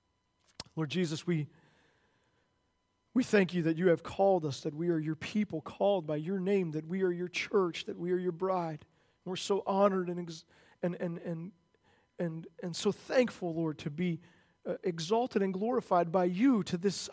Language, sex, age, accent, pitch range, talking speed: English, male, 40-59, American, 170-220 Hz, 190 wpm